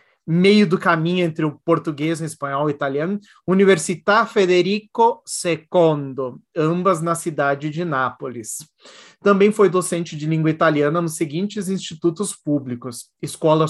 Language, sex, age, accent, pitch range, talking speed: Portuguese, male, 30-49, Brazilian, 155-190 Hz, 130 wpm